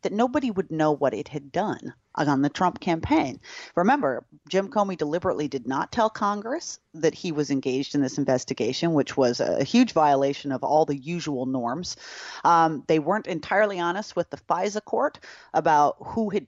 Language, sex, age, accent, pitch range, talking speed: English, female, 30-49, American, 145-205 Hz, 180 wpm